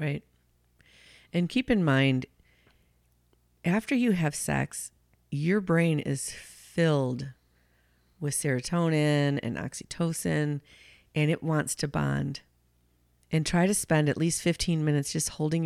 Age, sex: 40-59, female